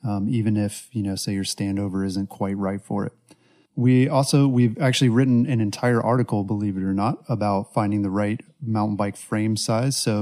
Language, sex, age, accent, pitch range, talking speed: English, male, 30-49, American, 105-130 Hz, 200 wpm